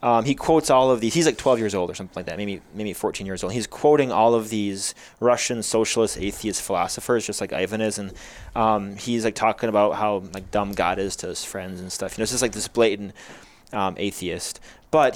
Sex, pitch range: male, 100-120 Hz